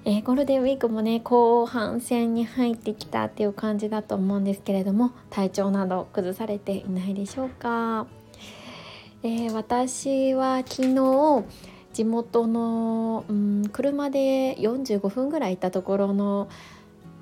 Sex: female